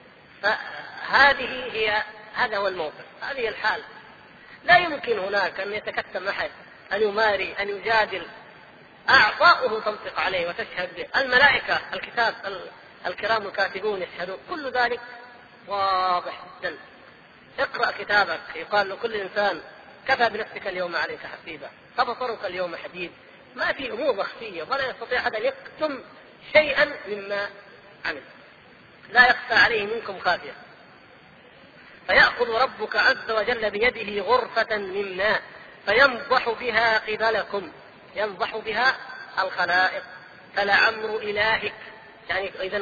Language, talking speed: Arabic, 110 wpm